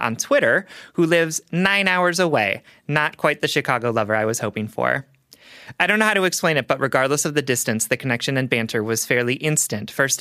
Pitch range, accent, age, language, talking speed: 125-160 Hz, American, 30-49, English, 210 wpm